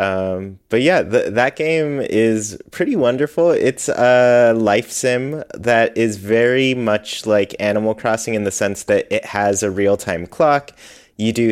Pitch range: 100-125 Hz